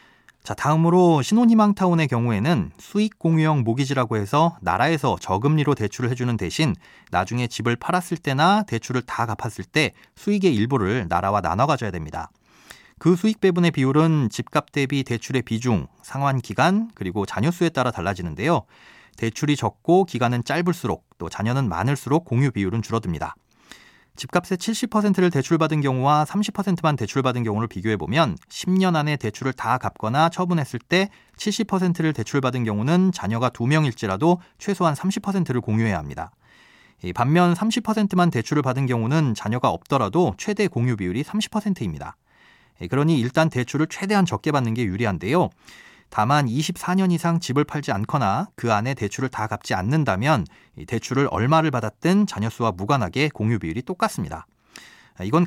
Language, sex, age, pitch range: Korean, male, 40-59, 115-170 Hz